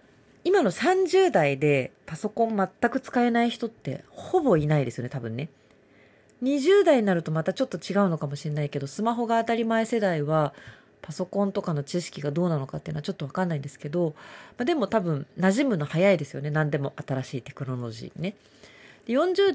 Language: Japanese